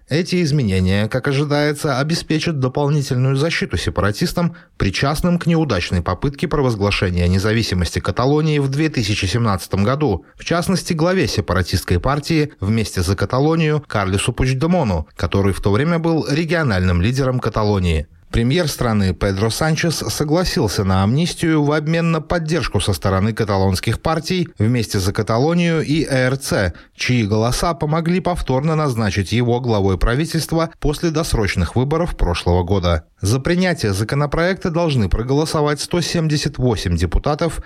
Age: 30-49